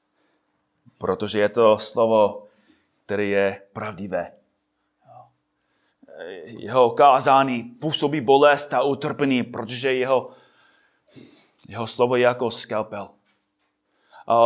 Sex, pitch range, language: male, 125-180 Hz, Czech